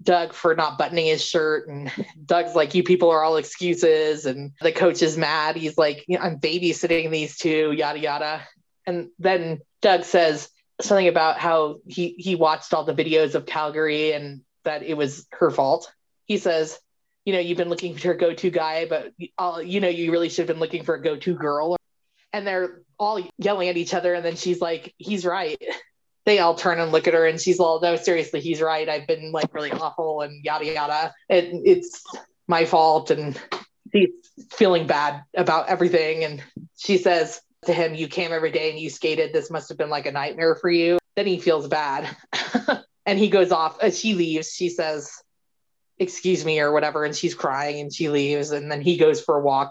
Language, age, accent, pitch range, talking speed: English, 20-39, American, 155-180 Hz, 200 wpm